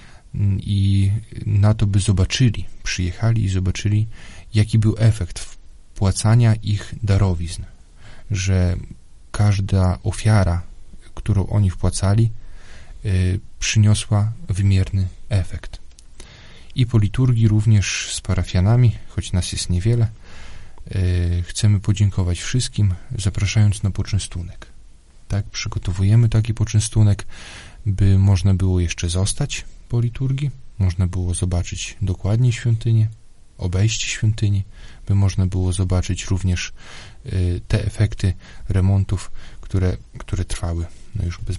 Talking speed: 100 wpm